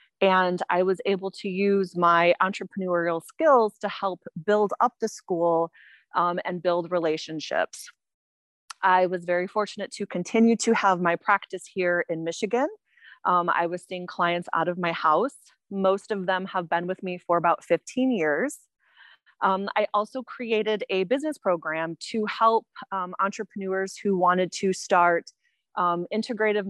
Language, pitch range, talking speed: English, 180-210 Hz, 155 wpm